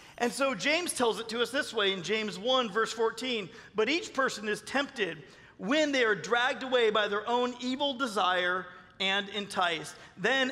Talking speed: 185 wpm